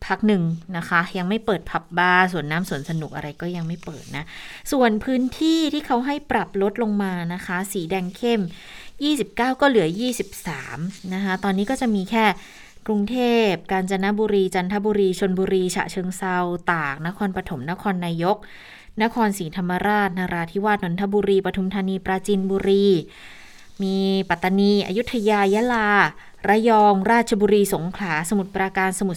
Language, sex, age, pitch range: Thai, female, 20-39, 175-210 Hz